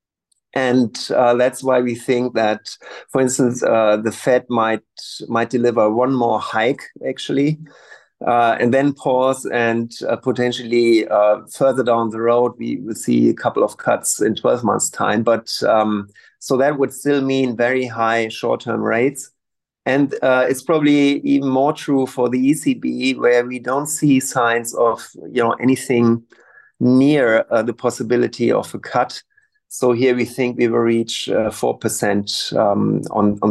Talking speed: 165 wpm